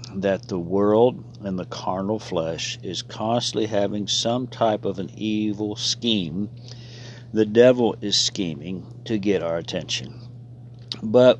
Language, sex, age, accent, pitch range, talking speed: English, male, 60-79, American, 100-120 Hz, 130 wpm